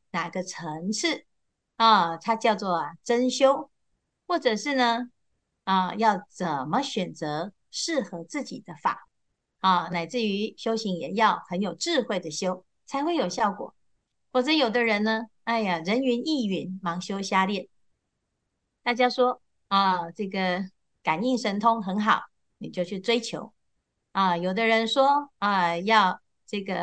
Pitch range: 180-245 Hz